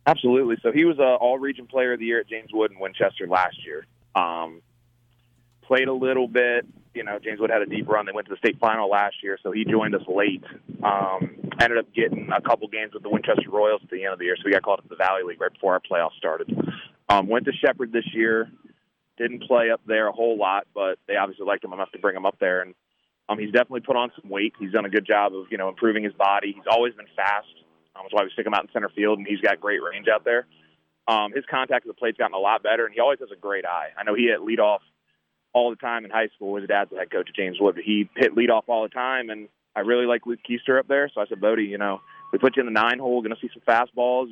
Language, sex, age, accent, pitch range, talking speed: English, male, 30-49, American, 105-125 Hz, 280 wpm